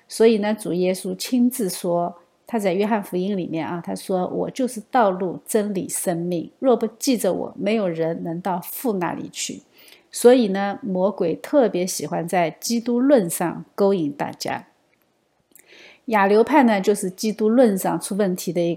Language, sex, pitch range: Chinese, female, 185-245 Hz